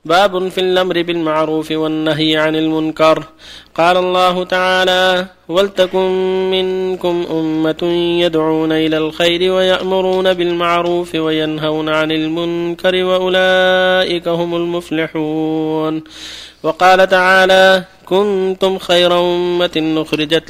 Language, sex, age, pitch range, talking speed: Arabic, male, 30-49, 160-185 Hz, 90 wpm